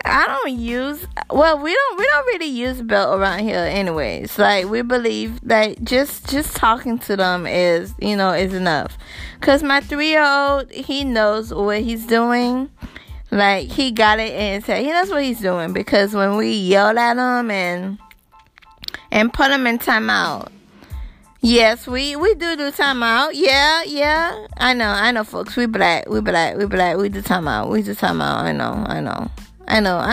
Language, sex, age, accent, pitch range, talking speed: English, female, 20-39, American, 200-270 Hz, 190 wpm